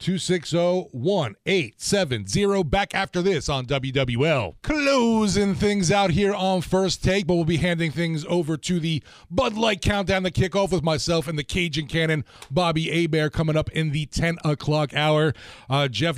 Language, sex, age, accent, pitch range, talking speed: English, male, 30-49, American, 140-175 Hz, 165 wpm